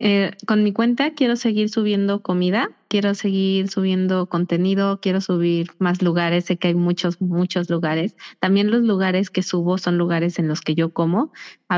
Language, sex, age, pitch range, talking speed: Spanish, female, 20-39, 170-200 Hz, 180 wpm